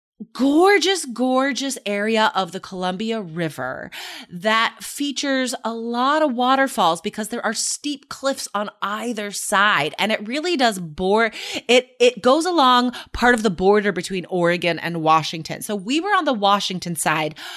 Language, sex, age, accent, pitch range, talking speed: English, female, 30-49, American, 205-255 Hz, 155 wpm